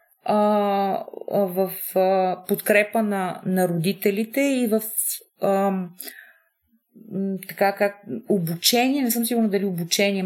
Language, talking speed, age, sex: Bulgarian, 95 wpm, 30-49, female